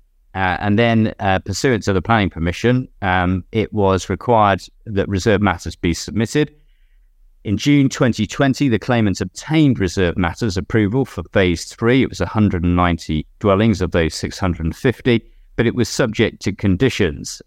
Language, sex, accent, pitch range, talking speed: English, male, British, 90-115 Hz, 150 wpm